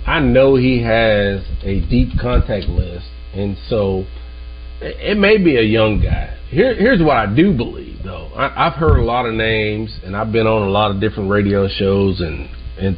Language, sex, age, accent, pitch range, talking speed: English, male, 40-59, American, 95-125 Hz, 195 wpm